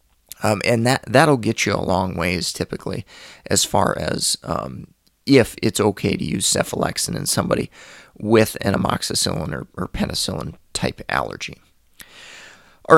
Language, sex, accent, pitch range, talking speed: English, male, American, 95-120 Hz, 135 wpm